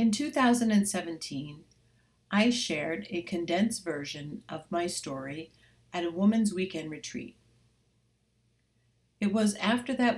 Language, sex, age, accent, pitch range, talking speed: English, female, 60-79, American, 120-185 Hz, 110 wpm